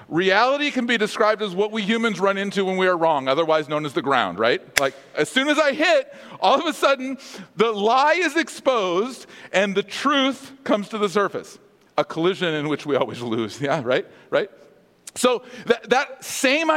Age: 40-59